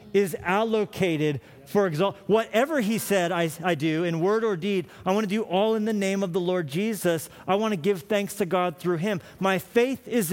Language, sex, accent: English, male, American